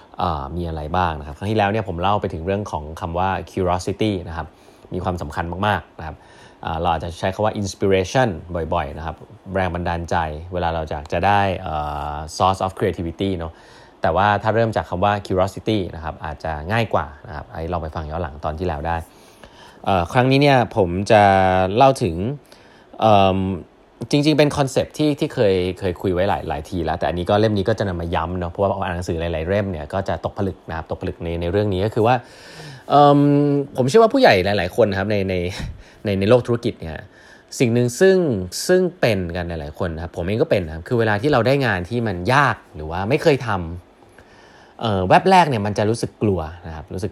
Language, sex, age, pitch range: Thai, male, 20-39, 85-110 Hz